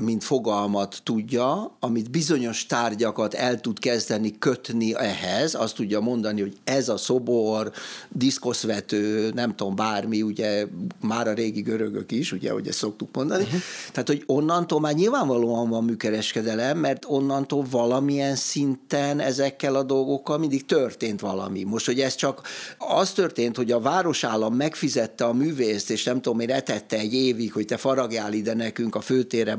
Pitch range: 110-135 Hz